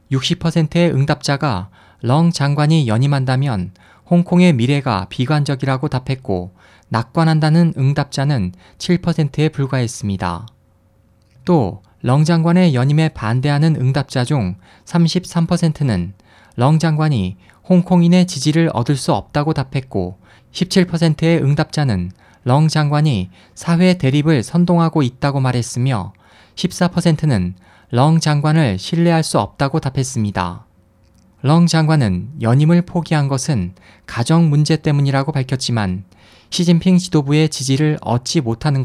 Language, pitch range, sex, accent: Korean, 105-160 Hz, male, native